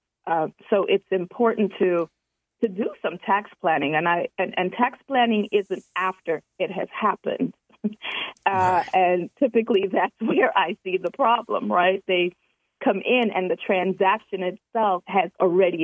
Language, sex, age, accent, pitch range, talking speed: English, female, 40-59, American, 180-215 Hz, 150 wpm